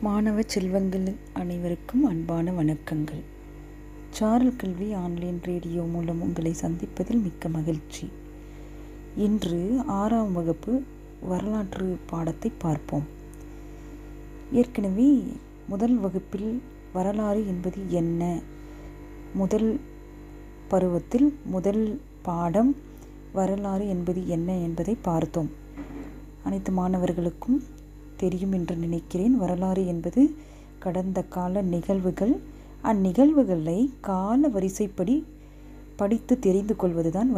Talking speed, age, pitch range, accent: 80 wpm, 30-49, 165-215 Hz, native